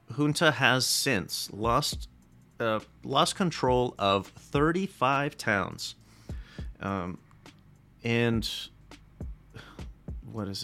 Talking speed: 80 wpm